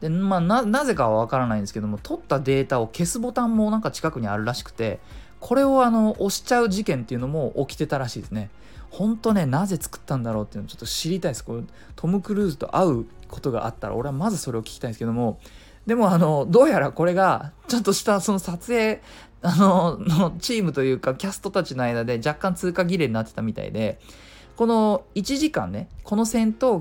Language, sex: Japanese, male